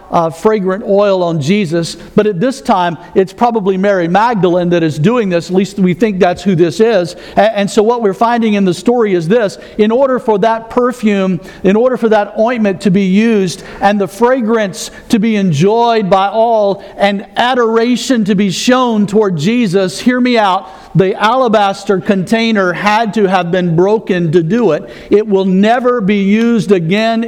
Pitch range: 175-215 Hz